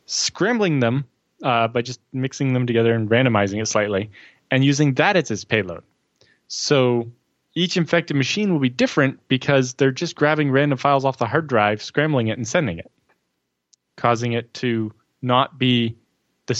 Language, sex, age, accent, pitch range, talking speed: English, male, 20-39, American, 115-145 Hz, 165 wpm